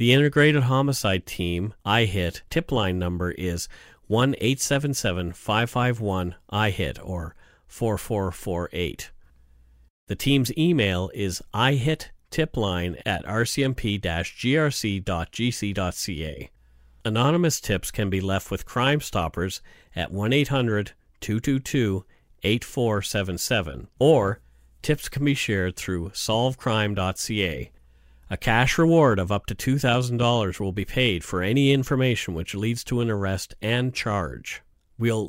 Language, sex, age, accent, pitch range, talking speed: English, male, 40-59, American, 90-125 Hz, 110 wpm